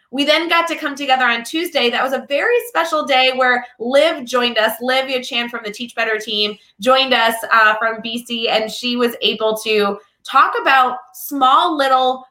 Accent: American